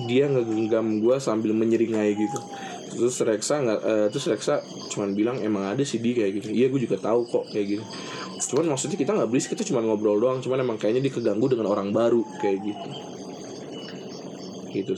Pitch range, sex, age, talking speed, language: 105-125 Hz, male, 20-39, 190 wpm, Indonesian